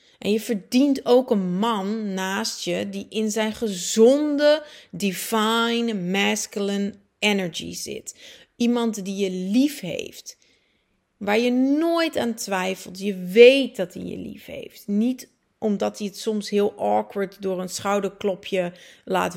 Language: Dutch